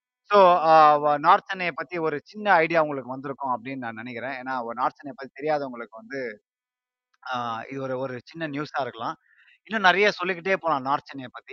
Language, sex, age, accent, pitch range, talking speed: Tamil, male, 30-49, native, 125-170 Hz, 155 wpm